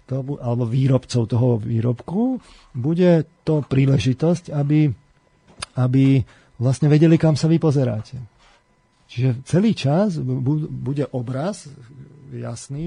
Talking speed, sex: 105 wpm, male